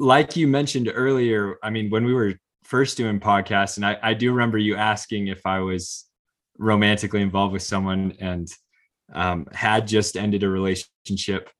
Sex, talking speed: male, 170 wpm